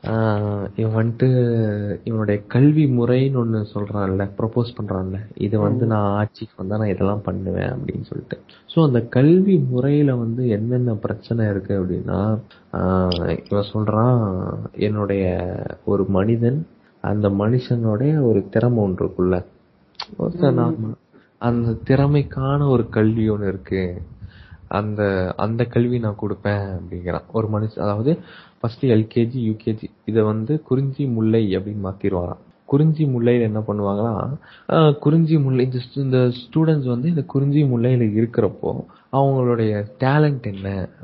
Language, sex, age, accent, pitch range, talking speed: Tamil, male, 20-39, native, 100-125 Hz, 95 wpm